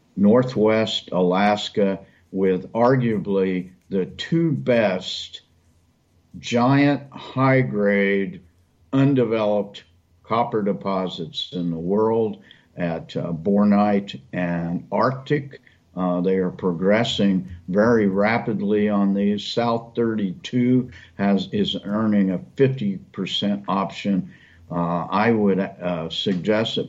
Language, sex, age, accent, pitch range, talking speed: English, male, 50-69, American, 90-115 Hz, 95 wpm